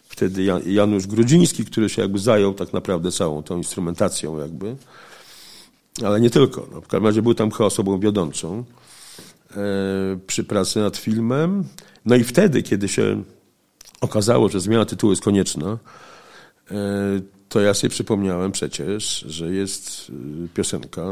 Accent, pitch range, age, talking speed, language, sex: native, 95-115 Hz, 50-69, 135 wpm, Polish, male